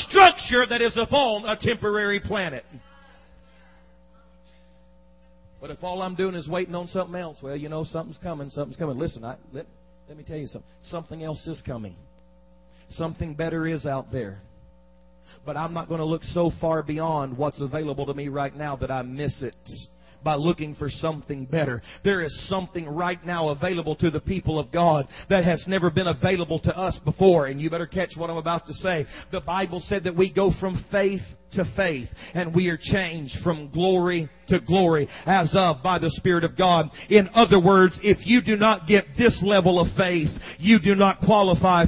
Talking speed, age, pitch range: 190 wpm, 40-59, 155-210 Hz